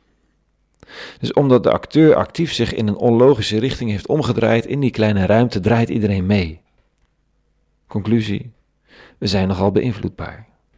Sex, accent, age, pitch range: male, Dutch, 40-59, 90-115 Hz